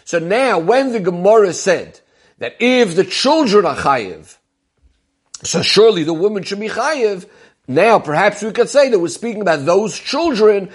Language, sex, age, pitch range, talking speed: English, male, 50-69, 165-225 Hz, 165 wpm